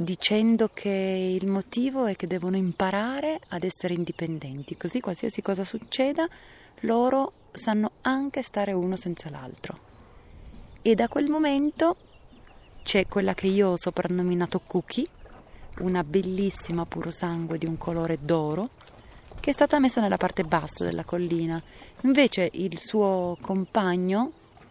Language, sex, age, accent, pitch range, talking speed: Italian, female, 30-49, native, 175-240 Hz, 130 wpm